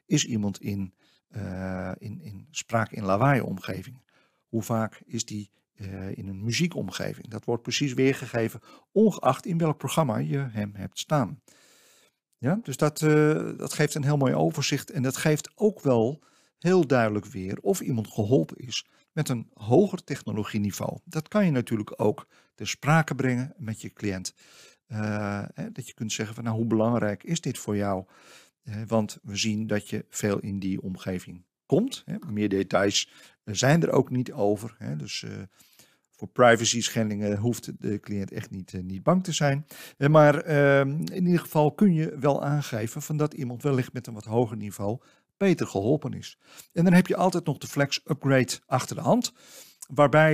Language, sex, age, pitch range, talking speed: Dutch, male, 50-69, 105-150 Hz, 165 wpm